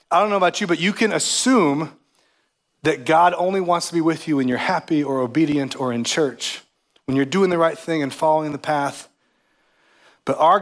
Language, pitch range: English, 120-155 Hz